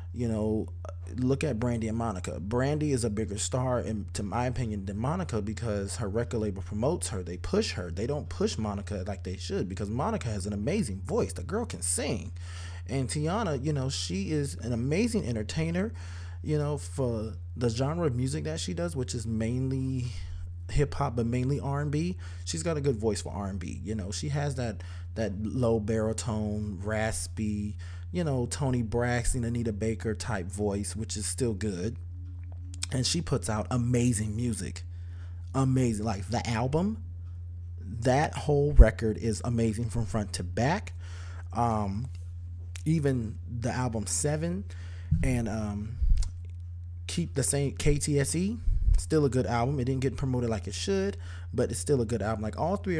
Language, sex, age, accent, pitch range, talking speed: English, male, 20-39, American, 85-120 Hz, 165 wpm